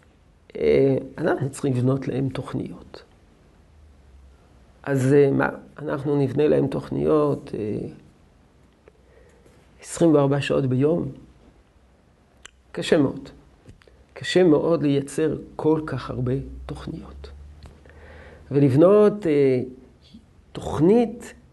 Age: 50-69